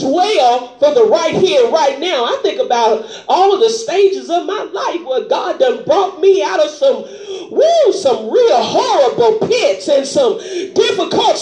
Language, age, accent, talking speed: English, 40-59, American, 170 wpm